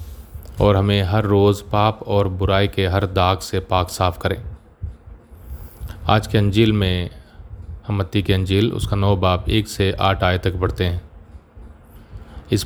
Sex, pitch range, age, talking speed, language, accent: male, 90-105 Hz, 30-49, 150 wpm, Hindi, native